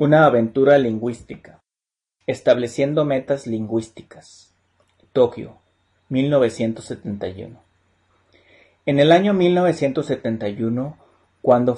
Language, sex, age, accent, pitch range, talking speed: Spanish, male, 30-49, Mexican, 105-140 Hz, 65 wpm